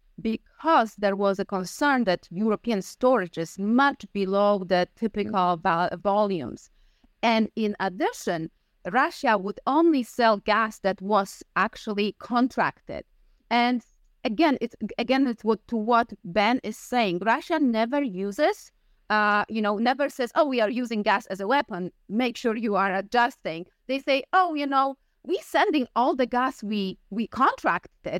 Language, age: English, 30-49